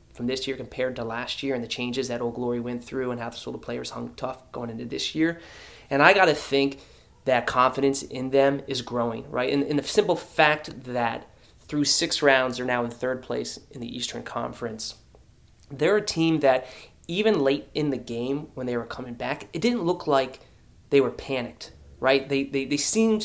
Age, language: 30-49, English